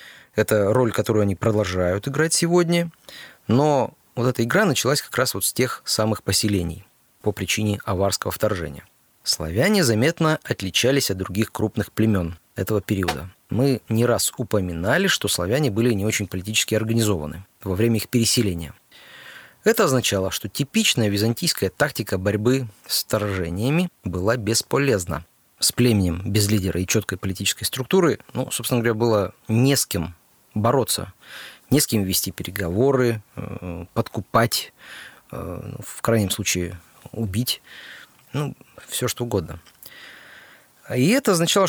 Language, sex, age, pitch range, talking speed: Russian, male, 30-49, 100-130 Hz, 135 wpm